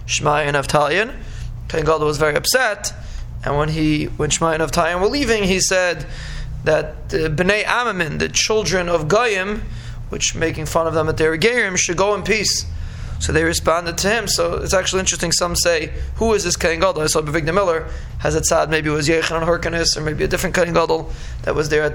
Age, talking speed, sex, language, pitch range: 20-39, 210 wpm, male, English, 150-180 Hz